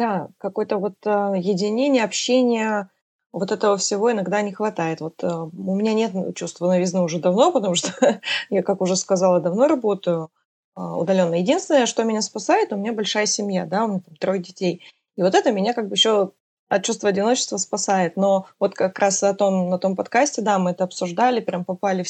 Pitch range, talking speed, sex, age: 185-225 Hz, 195 wpm, female, 20-39